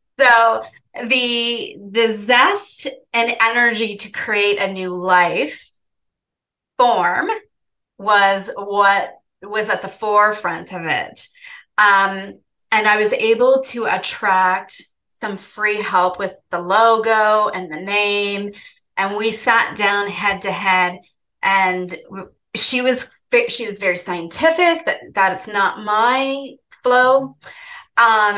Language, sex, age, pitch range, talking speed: English, female, 30-49, 185-225 Hz, 120 wpm